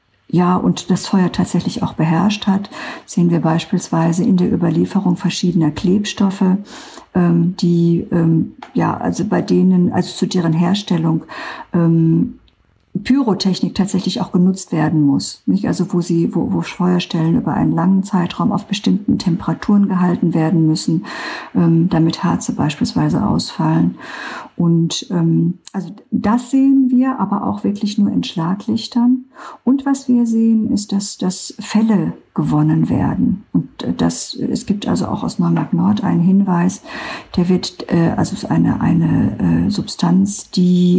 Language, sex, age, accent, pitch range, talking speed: German, female, 50-69, German, 170-215 Hz, 145 wpm